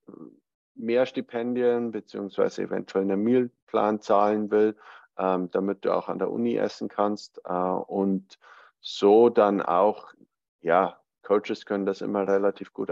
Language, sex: German, male